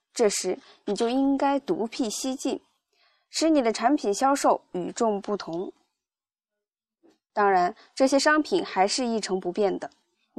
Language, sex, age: Chinese, female, 20-39